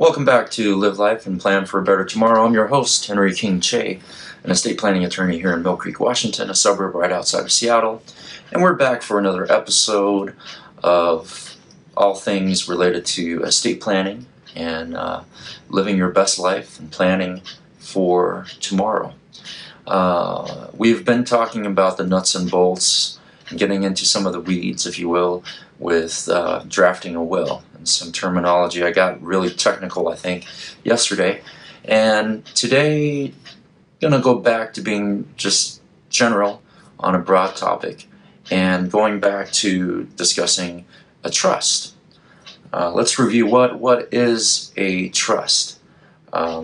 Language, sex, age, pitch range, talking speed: English, male, 30-49, 90-110 Hz, 155 wpm